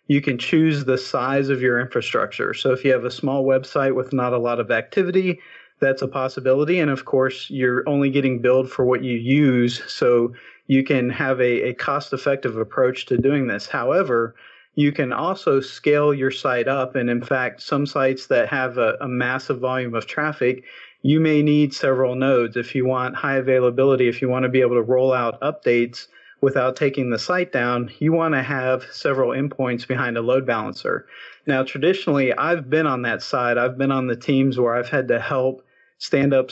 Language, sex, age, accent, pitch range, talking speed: English, male, 40-59, American, 125-140 Hz, 200 wpm